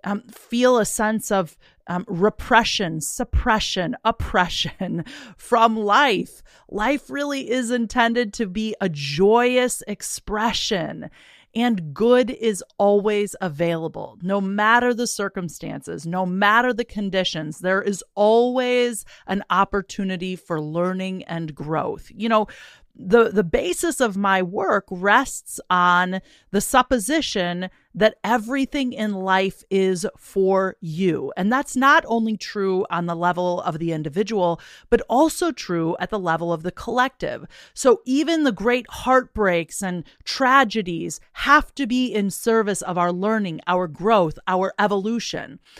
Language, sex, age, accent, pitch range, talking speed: English, female, 30-49, American, 185-240 Hz, 130 wpm